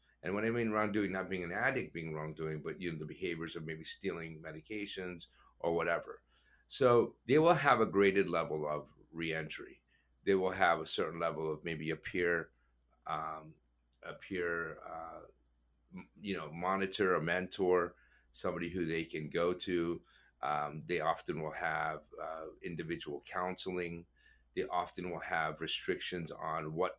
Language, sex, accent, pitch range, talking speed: English, male, American, 80-95 Hz, 160 wpm